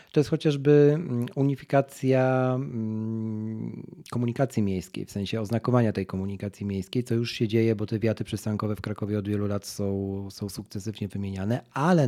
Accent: native